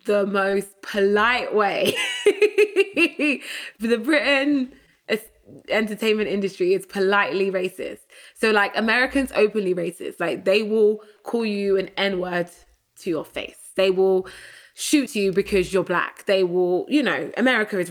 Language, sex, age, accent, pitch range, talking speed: English, female, 20-39, British, 185-220 Hz, 135 wpm